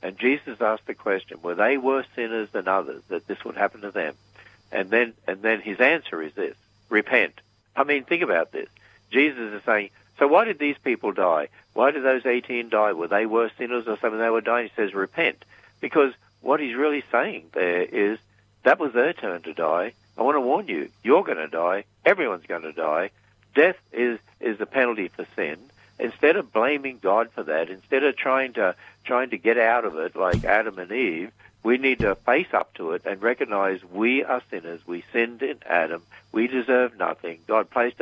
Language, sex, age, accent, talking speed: English, male, 60-79, Australian, 205 wpm